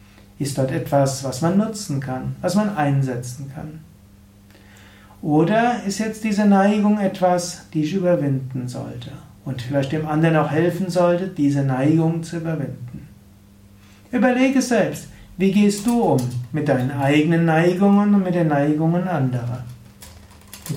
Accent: German